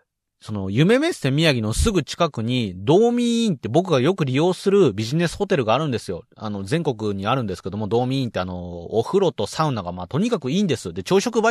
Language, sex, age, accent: Japanese, male, 30-49, native